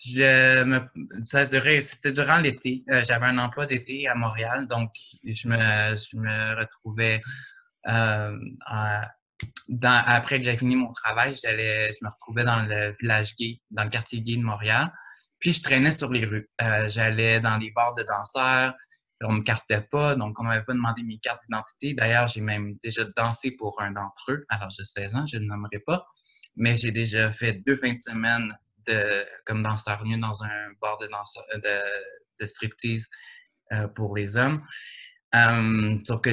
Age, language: 20-39, French